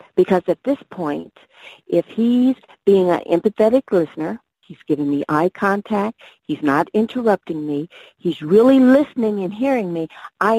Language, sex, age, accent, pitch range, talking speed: English, female, 50-69, American, 160-220 Hz, 145 wpm